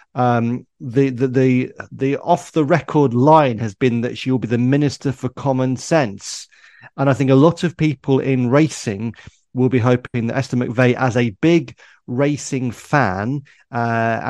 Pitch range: 120-135 Hz